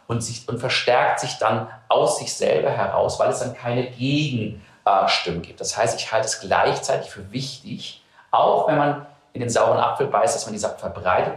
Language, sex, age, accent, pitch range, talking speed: German, male, 40-59, German, 110-140 Hz, 200 wpm